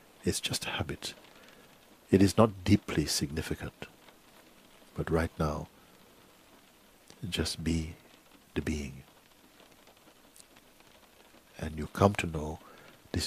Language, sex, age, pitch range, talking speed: English, male, 60-79, 80-105 Hz, 100 wpm